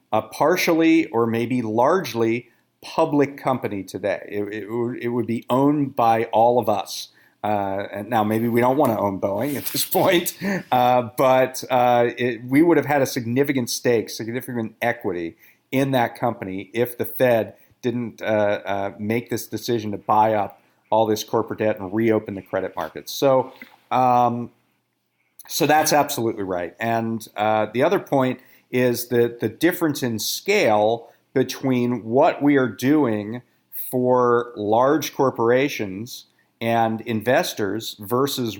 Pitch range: 110-130 Hz